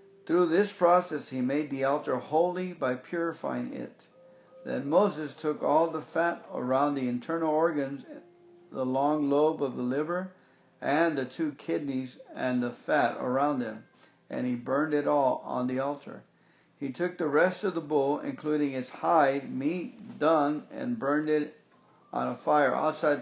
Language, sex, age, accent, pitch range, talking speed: English, male, 60-79, American, 135-170 Hz, 165 wpm